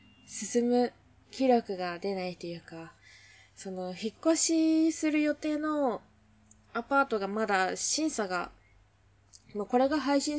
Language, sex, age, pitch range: Japanese, female, 20-39, 180-240 Hz